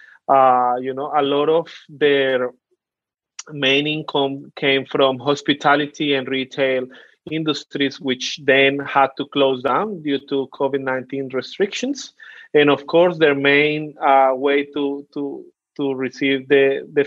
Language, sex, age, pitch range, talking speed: English, male, 30-49, 140-160 Hz, 135 wpm